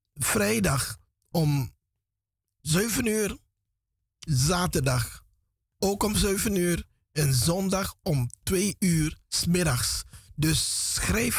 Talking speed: 95 wpm